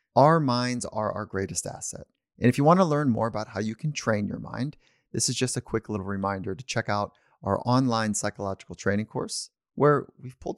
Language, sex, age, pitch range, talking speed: English, male, 30-49, 100-125 Hz, 215 wpm